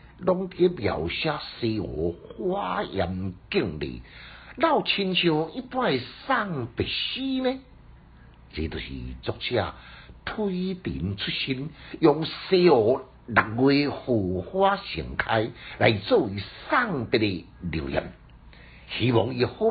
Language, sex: Chinese, male